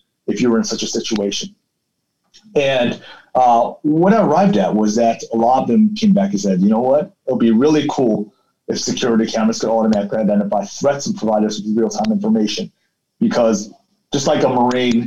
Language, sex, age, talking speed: English, male, 30-49, 195 wpm